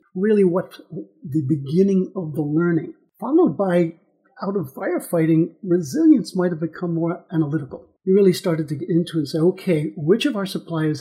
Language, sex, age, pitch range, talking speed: English, male, 50-69, 155-190 Hz, 175 wpm